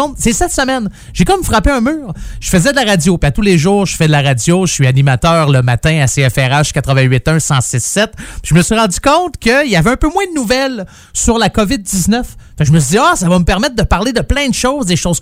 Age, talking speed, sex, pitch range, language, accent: 30-49, 250 wpm, male, 145-220 Hz, French, Canadian